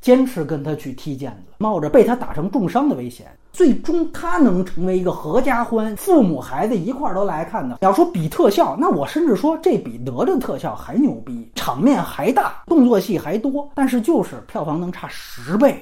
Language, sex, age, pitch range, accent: Chinese, male, 30-49, 155-255 Hz, native